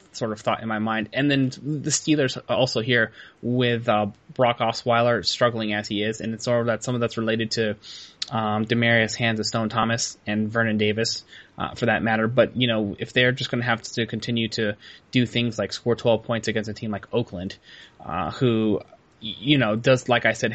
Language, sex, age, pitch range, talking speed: English, male, 20-39, 105-120 Hz, 215 wpm